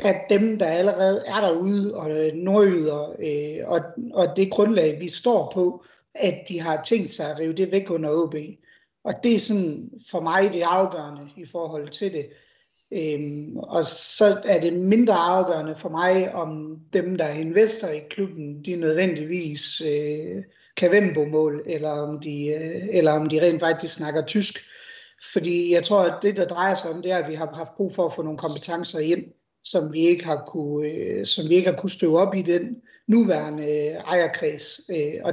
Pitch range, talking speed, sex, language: 155-195 Hz, 185 wpm, male, Danish